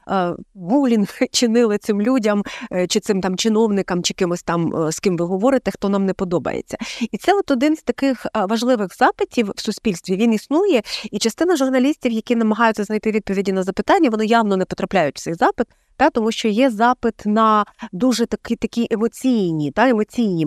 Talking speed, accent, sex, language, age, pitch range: 175 wpm, native, female, Ukrainian, 30-49, 185-235 Hz